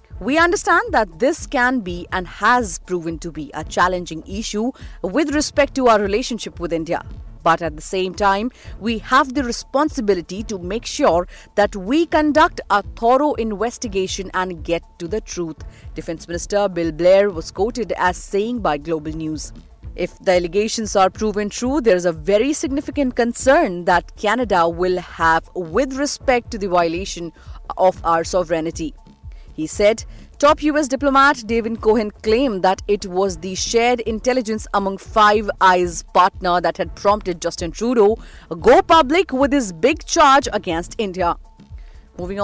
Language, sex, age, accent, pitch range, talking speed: English, female, 30-49, Indian, 180-240 Hz, 155 wpm